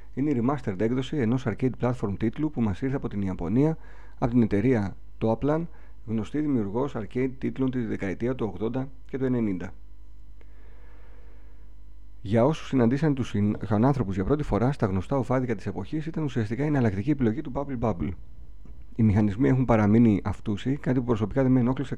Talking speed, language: 165 wpm, Greek